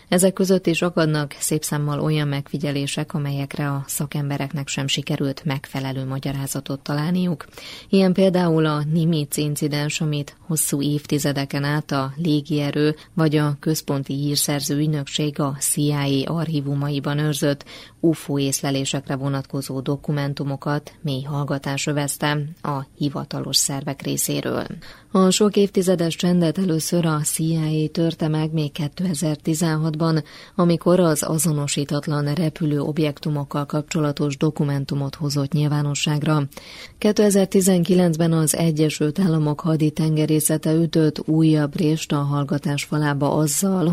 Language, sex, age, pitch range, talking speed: Hungarian, female, 20-39, 145-160 Hz, 110 wpm